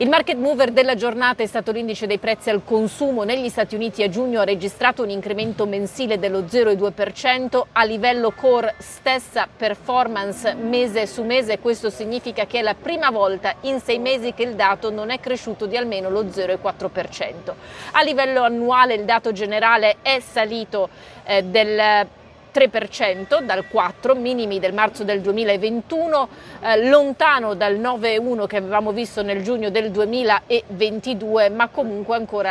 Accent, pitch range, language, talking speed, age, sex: native, 200-245 Hz, Italian, 155 wpm, 30-49, female